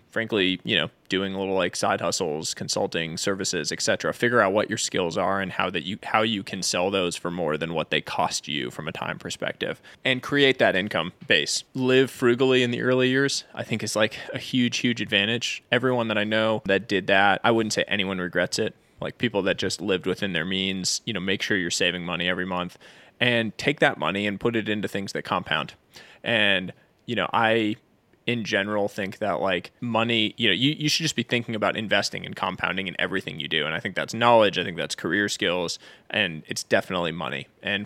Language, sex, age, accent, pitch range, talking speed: English, male, 20-39, American, 95-120 Hz, 220 wpm